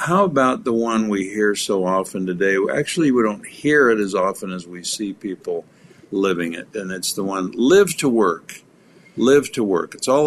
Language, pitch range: English, 95-130 Hz